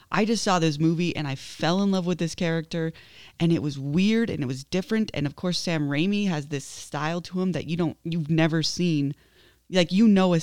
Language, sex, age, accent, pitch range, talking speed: English, female, 20-39, American, 150-185 Hz, 235 wpm